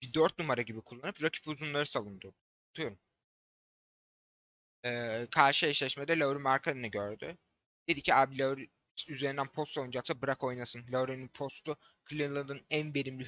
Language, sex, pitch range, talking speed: Turkish, male, 120-145 Hz, 125 wpm